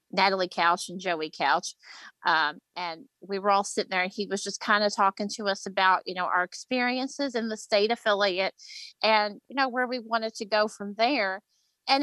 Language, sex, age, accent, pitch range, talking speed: English, female, 30-49, American, 190-235 Hz, 205 wpm